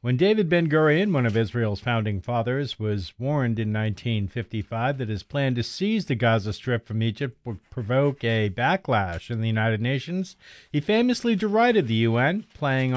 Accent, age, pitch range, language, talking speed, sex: American, 50-69, 115-160 Hz, English, 165 wpm, male